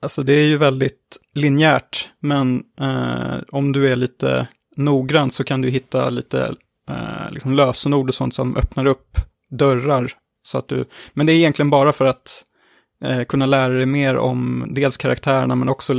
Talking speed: 175 wpm